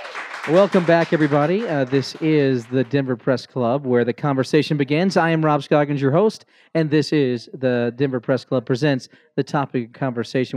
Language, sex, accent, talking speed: English, male, American, 175 wpm